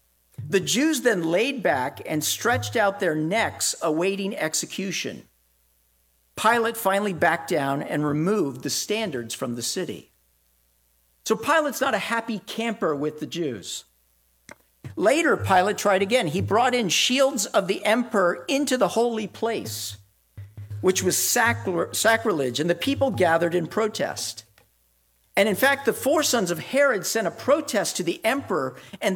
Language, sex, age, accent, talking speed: English, male, 50-69, American, 145 wpm